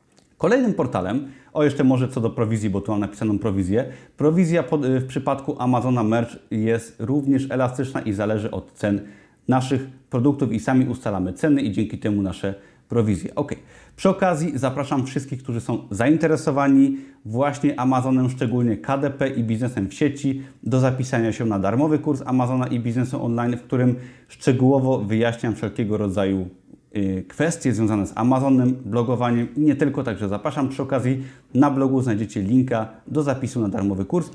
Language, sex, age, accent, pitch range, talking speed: Polish, male, 30-49, native, 110-140 Hz, 155 wpm